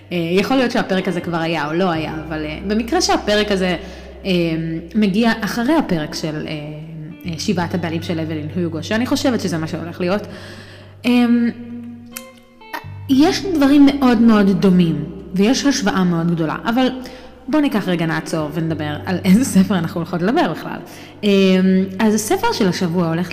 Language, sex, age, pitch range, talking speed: Hebrew, female, 20-39, 165-225 Hz, 160 wpm